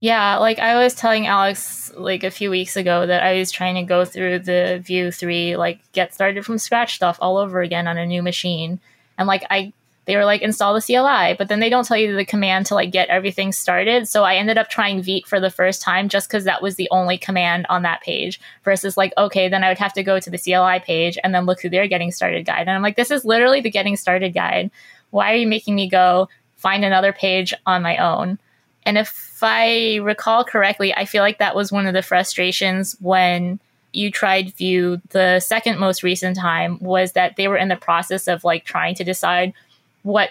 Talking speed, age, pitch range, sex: 230 wpm, 20-39, 180-200 Hz, female